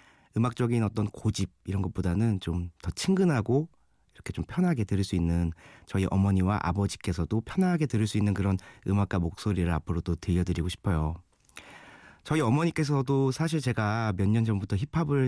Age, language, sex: 30-49, Korean, male